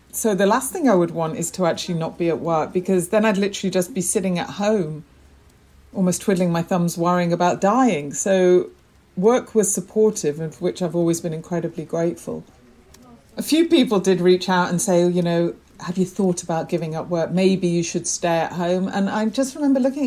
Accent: British